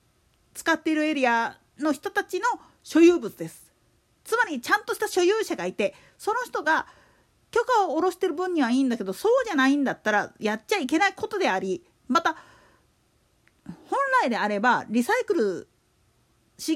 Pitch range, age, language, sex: 250-395 Hz, 40-59, Japanese, female